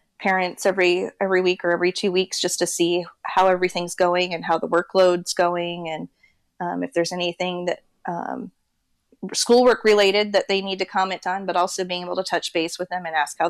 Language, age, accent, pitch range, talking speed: English, 30-49, American, 170-190 Hz, 205 wpm